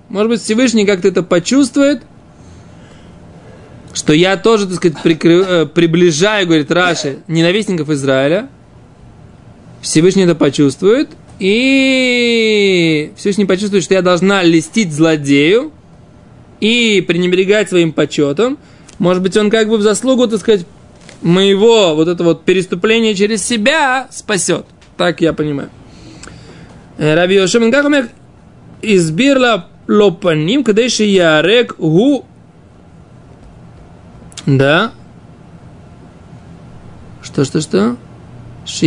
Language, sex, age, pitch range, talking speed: Russian, male, 20-39, 160-215 Hz, 90 wpm